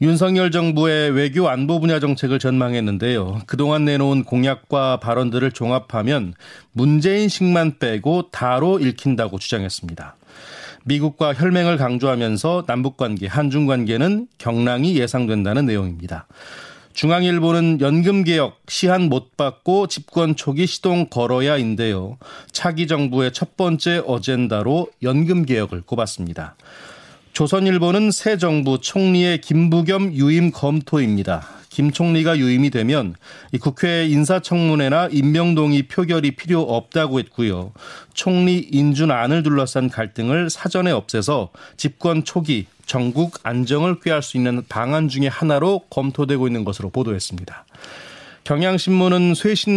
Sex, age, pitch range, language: male, 30-49, 125-170 Hz, Korean